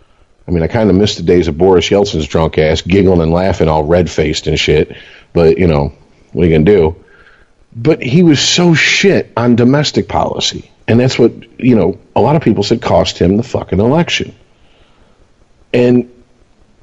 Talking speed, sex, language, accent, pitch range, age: 195 wpm, male, English, American, 90-130 Hz, 50-69